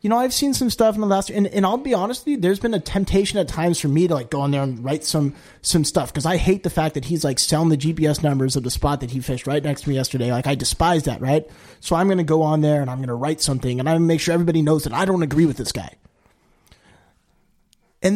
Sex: male